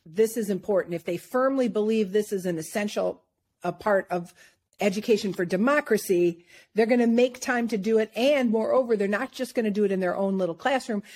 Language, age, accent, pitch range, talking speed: English, 50-69, American, 185-235 Hz, 210 wpm